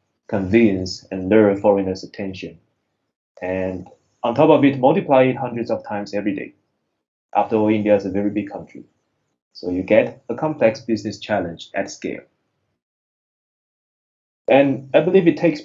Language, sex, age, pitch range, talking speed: English, male, 20-39, 95-125 Hz, 150 wpm